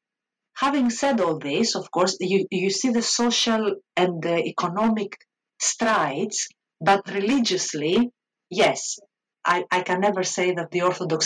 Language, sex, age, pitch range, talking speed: English, female, 50-69, 170-215 Hz, 140 wpm